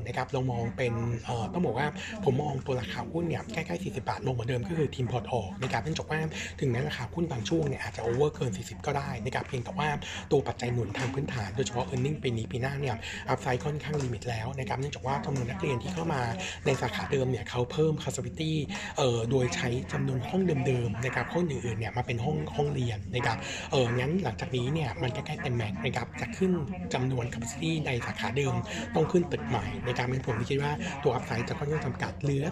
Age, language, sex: 60-79, Thai, male